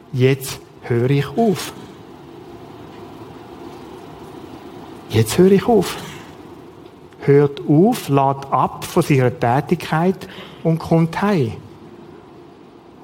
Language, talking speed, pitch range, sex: German, 85 wpm, 140-185 Hz, male